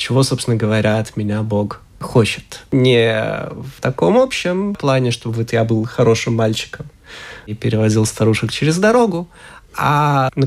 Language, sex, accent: Russian, male, native